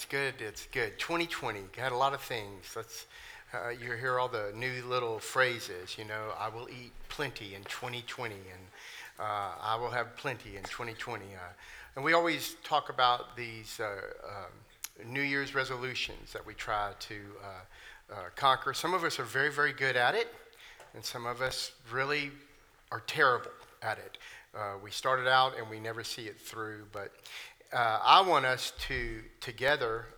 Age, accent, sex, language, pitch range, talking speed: 50-69, American, male, English, 110-130 Hz, 175 wpm